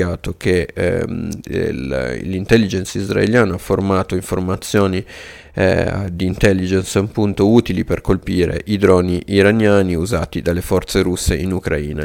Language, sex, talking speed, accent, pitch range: Italian, male, 105 wpm, native, 90-100 Hz